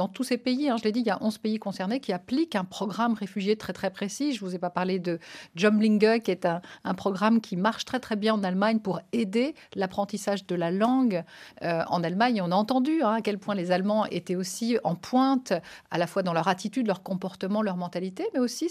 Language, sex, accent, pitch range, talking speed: French, female, French, 190-235 Hz, 245 wpm